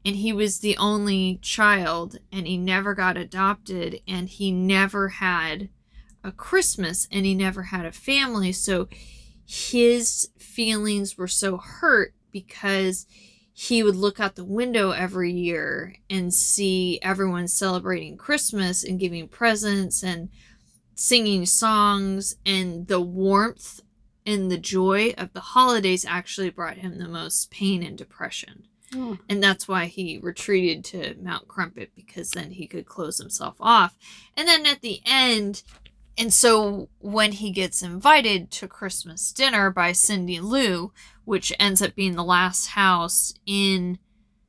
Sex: female